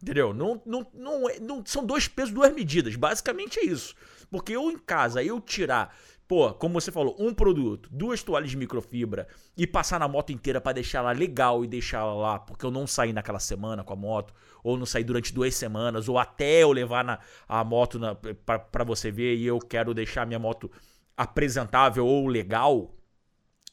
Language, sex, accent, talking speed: Portuguese, male, Brazilian, 185 wpm